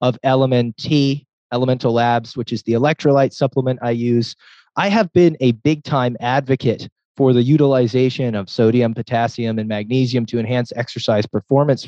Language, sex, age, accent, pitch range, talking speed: English, male, 20-39, American, 115-150 Hz, 145 wpm